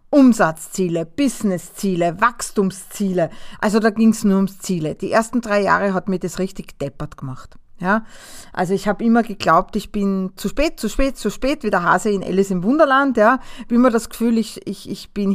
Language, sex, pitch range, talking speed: German, female, 195-250 Hz, 195 wpm